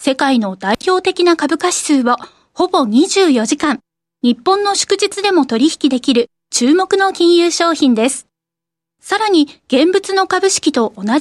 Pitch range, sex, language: 245-355 Hz, female, Japanese